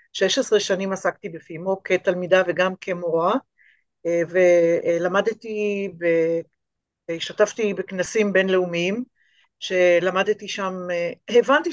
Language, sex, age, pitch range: Hebrew, female, 50-69, 175-240 Hz